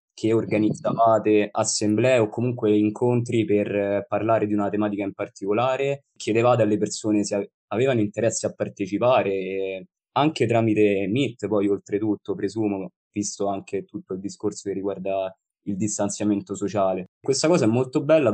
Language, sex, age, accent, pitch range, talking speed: Italian, male, 20-39, native, 100-115 Hz, 135 wpm